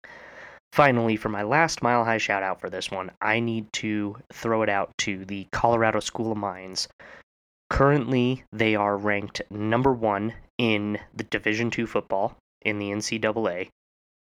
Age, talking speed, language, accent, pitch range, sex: 20-39, 145 wpm, English, American, 100-115 Hz, male